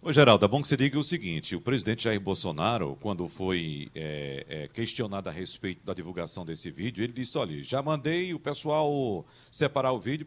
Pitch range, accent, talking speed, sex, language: 115-155 Hz, Brazilian, 180 wpm, male, Portuguese